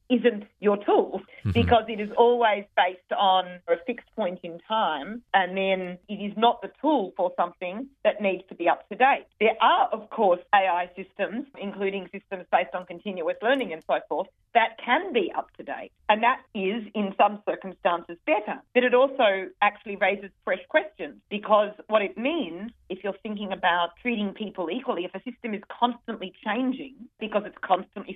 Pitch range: 190-240 Hz